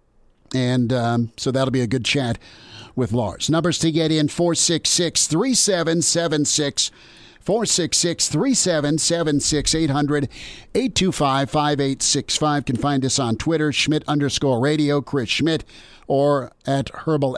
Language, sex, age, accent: English, male, 50-69, American